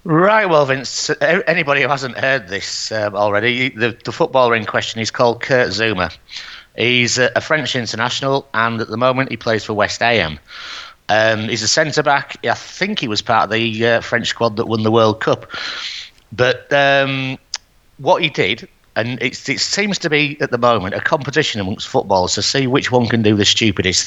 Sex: male